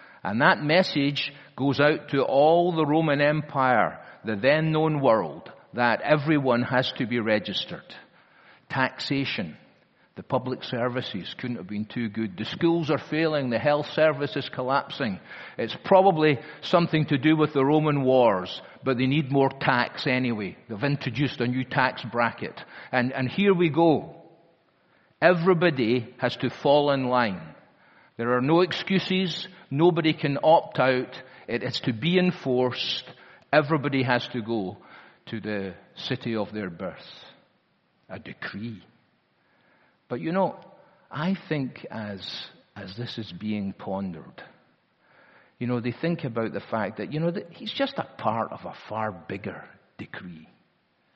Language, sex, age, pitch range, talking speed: English, male, 50-69, 120-155 Hz, 145 wpm